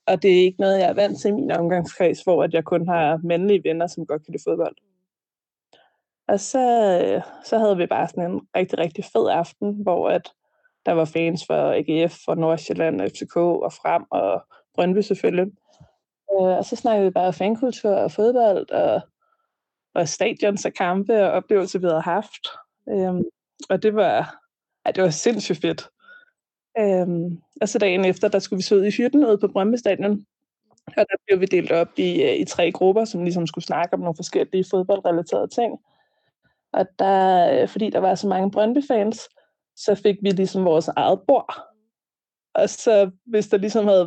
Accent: native